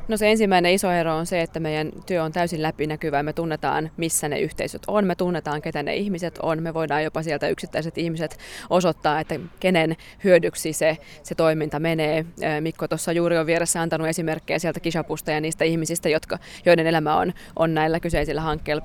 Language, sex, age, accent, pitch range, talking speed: Finnish, female, 20-39, native, 155-175 Hz, 190 wpm